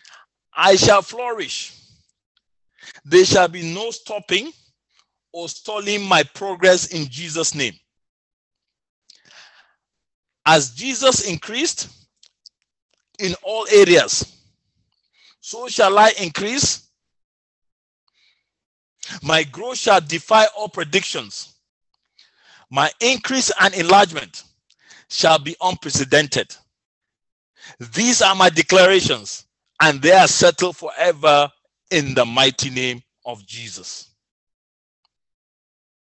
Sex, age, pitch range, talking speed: male, 40-59, 135-200 Hz, 90 wpm